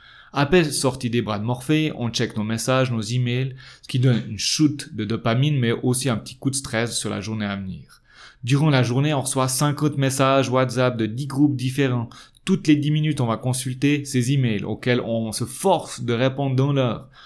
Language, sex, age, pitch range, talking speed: French, male, 30-49, 110-140 Hz, 210 wpm